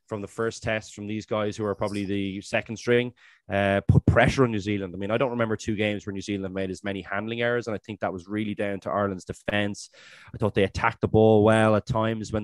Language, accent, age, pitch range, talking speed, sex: English, Irish, 20-39, 100-120 Hz, 260 wpm, male